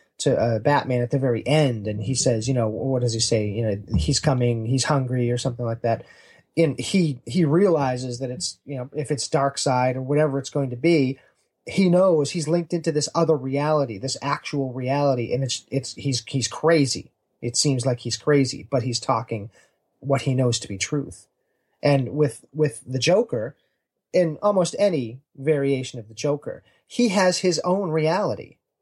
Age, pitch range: 30-49, 130-165 Hz